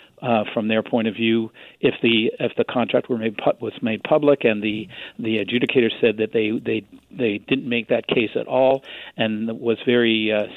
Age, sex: 50-69, male